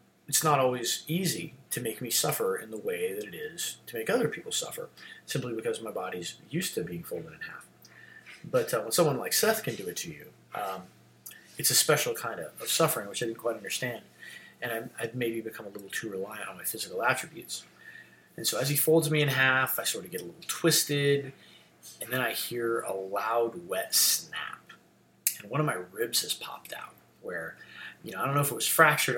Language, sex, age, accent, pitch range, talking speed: English, male, 30-49, American, 115-170 Hz, 220 wpm